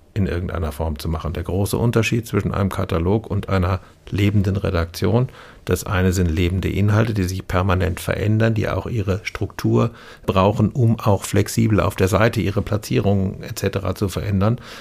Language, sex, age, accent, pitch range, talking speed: German, male, 60-79, German, 90-105 Hz, 160 wpm